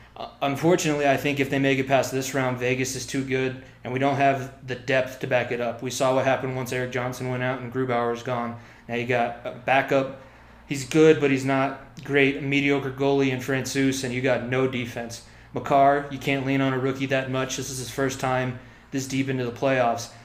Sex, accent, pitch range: male, American, 125-140 Hz